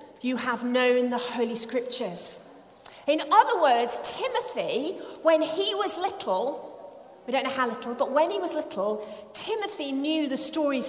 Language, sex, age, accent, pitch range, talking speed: English, female, 40-59, British, 235-325 Hz, 155 wpm